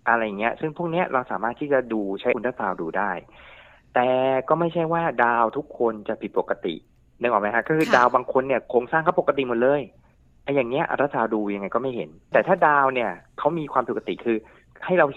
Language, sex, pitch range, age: Thai, male, 105-150 Hz, 30-49